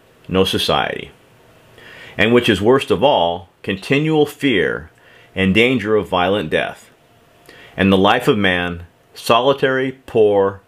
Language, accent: English, American